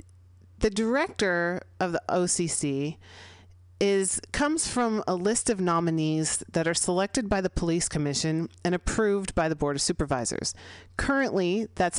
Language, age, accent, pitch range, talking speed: English, 40-59, American, 150-205 Hz, 135 wpm